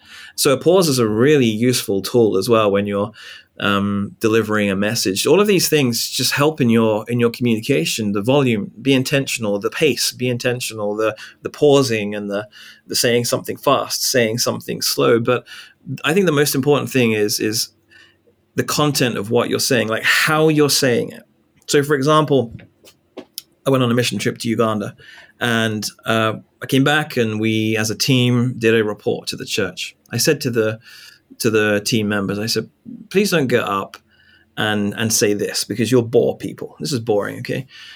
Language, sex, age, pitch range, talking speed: English, male, 30-49, 105-130 Hz, 190 wpm